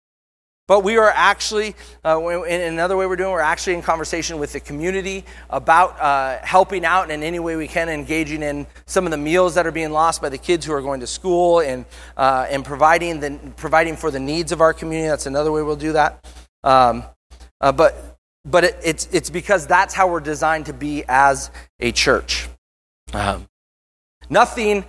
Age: 30-49